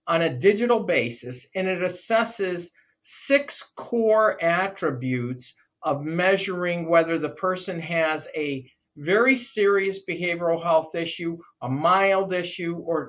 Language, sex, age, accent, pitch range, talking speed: English, male, 50-69, American, 145-190 Hz, 120 wpm